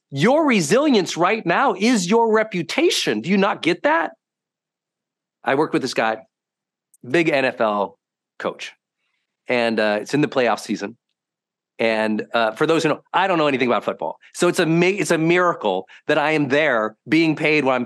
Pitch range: 135-190 Hz